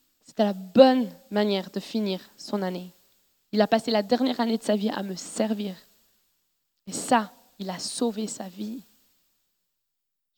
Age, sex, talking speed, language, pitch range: 20-39, female, 160 wpm, French, 210-255 Hz